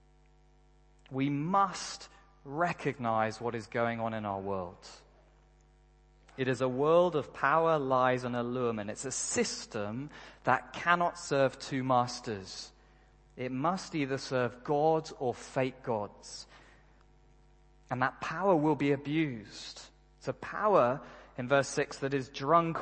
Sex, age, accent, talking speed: male, 30-49, British, 130 wpm